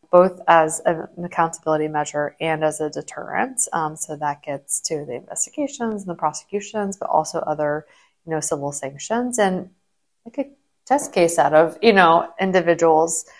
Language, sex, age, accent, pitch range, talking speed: English, female, 20-39, American, 155-190 Hz, 160 wpm